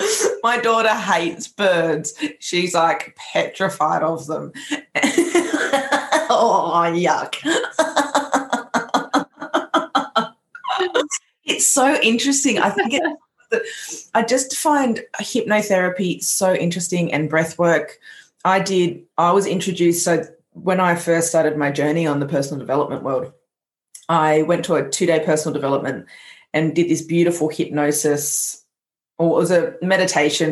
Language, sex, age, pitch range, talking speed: English, female, 20-39, 150-195 Hz, 115 wpm